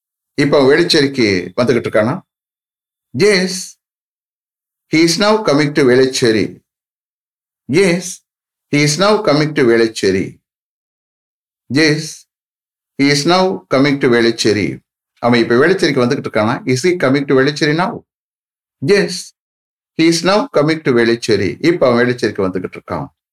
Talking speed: 95 wpm